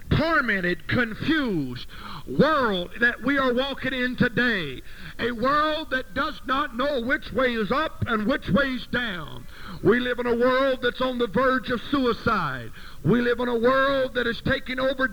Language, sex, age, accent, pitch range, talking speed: English, male, 50-69, American, 215-255 Hz, 175 wpm